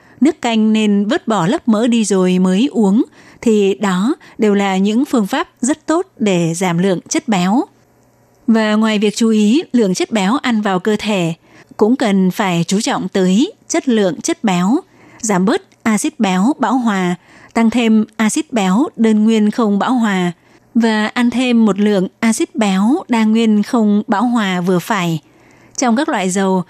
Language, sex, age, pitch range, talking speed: Vietnamese, female, 20-39, 195-235 Hz, 180 wpm